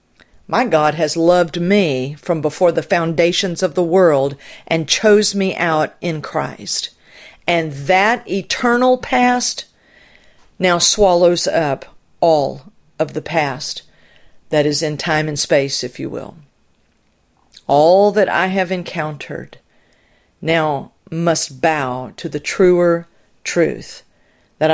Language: English